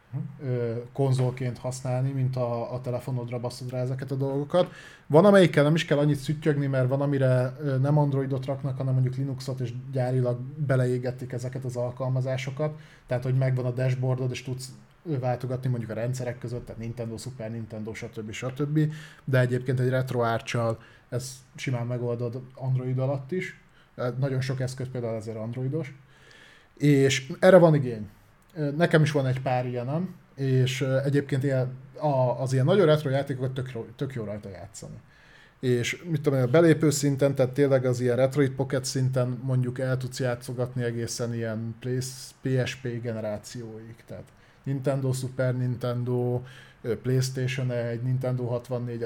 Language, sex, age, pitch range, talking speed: Hungarian, male, 20-39, 125-140 Hz, 145 wpm